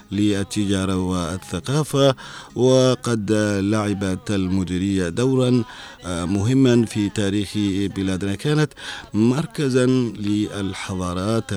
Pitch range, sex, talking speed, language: 95-115 Hz, male, 65 wpm, Arabic